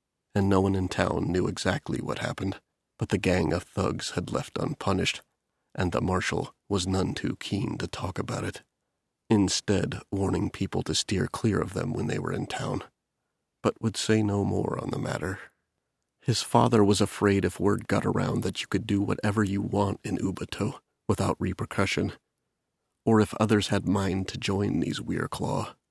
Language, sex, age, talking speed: English, male, 30-49, 180 wpm